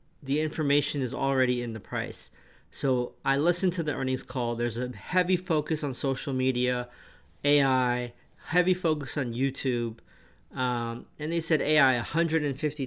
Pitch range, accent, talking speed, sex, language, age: 125-150 Hz, American, 150 wpm, male, English, 40-59